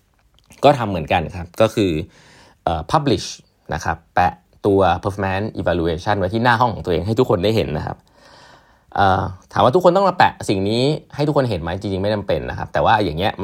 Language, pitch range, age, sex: Thai, 90-120 Hz, 20-39, male